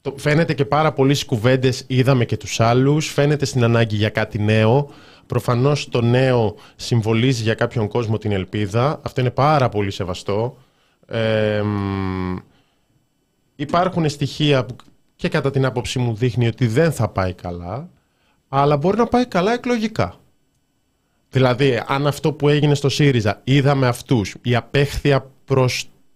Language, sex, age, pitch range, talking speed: Greek, male, 20-39, 110-140 Hz, 140 wpm